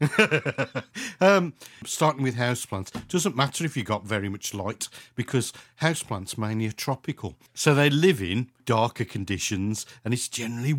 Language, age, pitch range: English, 50-69, 115-150 Hz